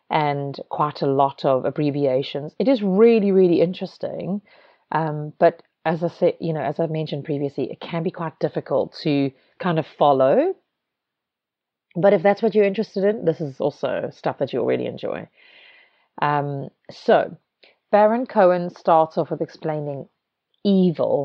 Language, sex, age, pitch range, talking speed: English, female, 30-49, 150-185 Hz, 155 wpm